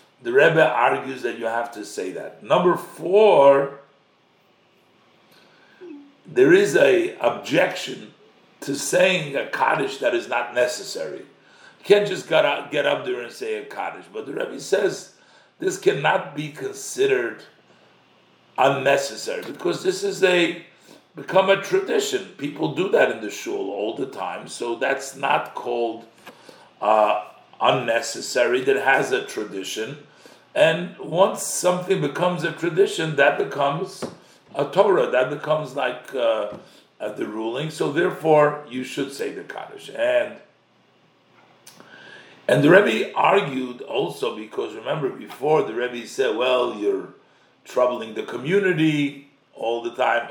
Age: 50-69